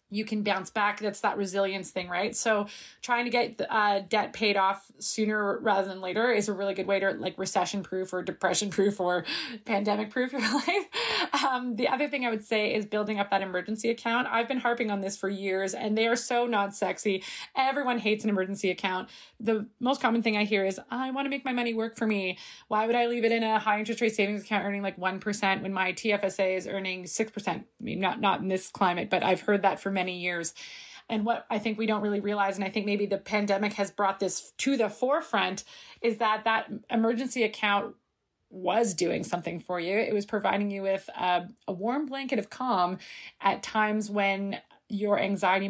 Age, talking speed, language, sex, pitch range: 20-39, 210 wpm, English, female, 195-230 Hz